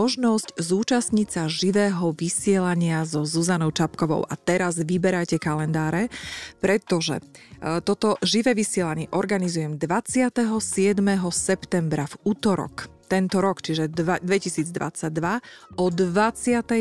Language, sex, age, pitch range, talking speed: Slovak, female, 30-49, 170-215 Hz, 95 wpm